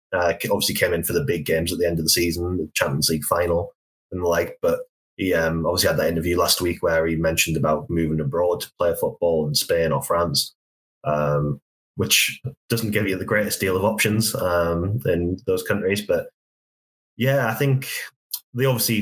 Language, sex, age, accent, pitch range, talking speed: English, male, 20-39, British, 80-105 Hz, 200 wpm